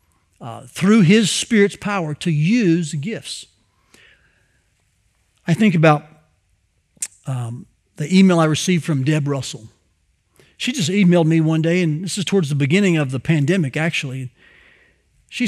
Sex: male